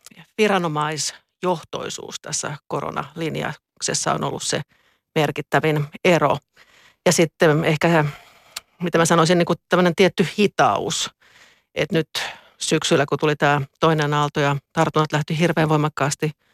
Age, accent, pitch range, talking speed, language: 50-69, native, 150-170 Hz, 115 wpm, Finnish